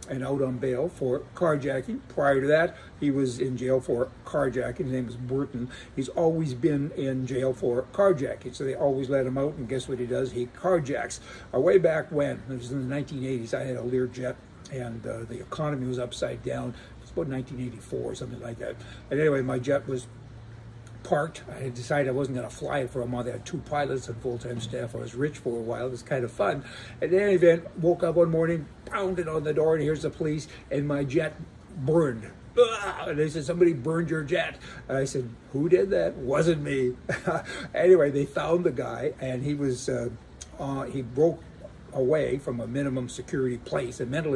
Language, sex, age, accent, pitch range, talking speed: English, male, 60-79, American, 125-155 Hz, 210 wpm